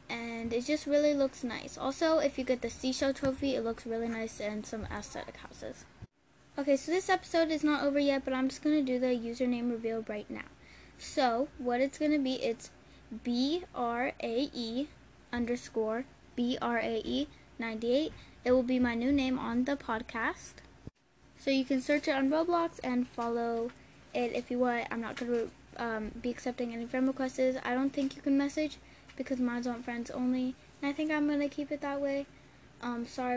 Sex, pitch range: female, 235-280 Hz